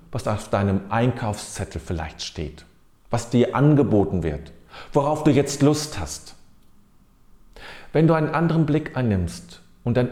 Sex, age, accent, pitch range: male, 40-59, German, 100-165 Hz